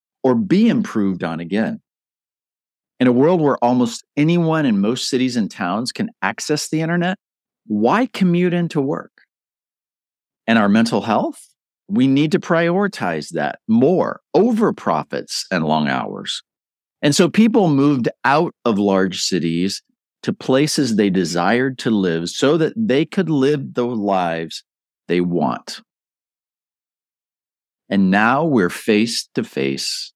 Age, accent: 50-69, American